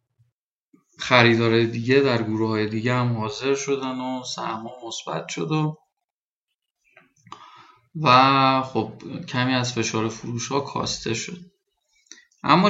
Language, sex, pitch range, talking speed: Persian, male, 120-165 Hz, 115 wpm